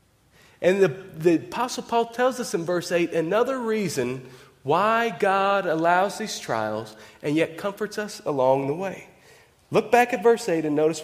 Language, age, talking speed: English, 30-49, 170 wpm